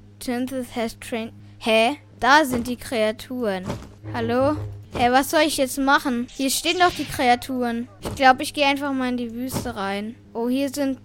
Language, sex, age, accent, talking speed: German, female, 10-29, German, 175 wpm